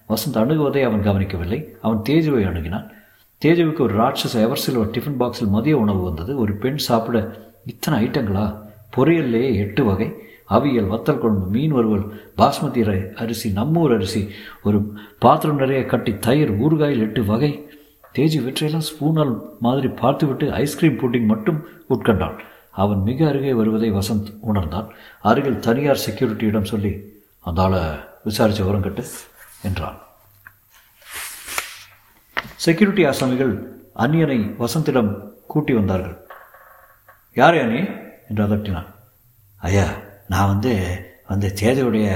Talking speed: 110 wpm